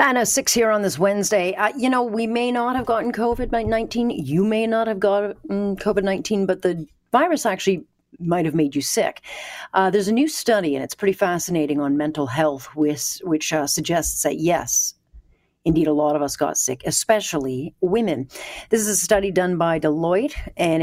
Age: 40-59